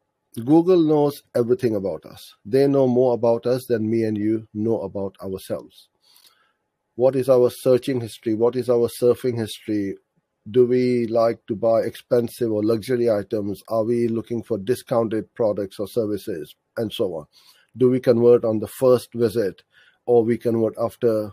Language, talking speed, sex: English, 165 wpm, male